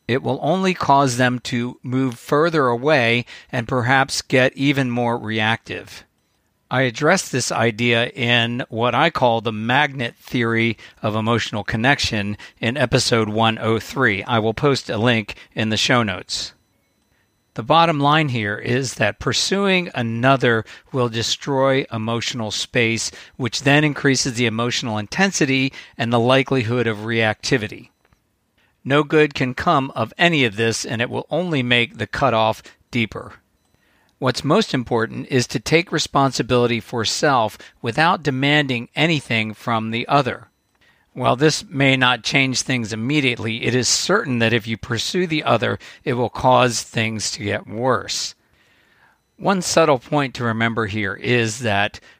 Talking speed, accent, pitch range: 145 wpm, American, 115-140 Hz